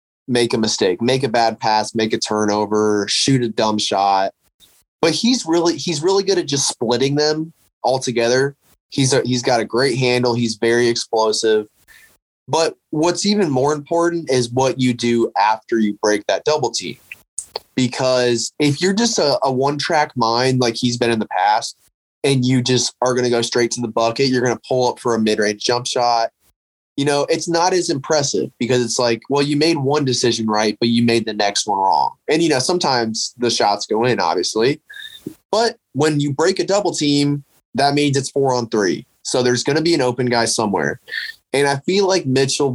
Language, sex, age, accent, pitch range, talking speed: English, male, 20-39, American, 115-145 Hz, 205 wpm